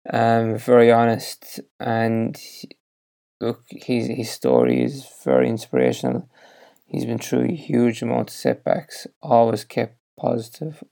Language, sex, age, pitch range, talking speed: English, male, 20-39, 115-125 Hz, 120 wpm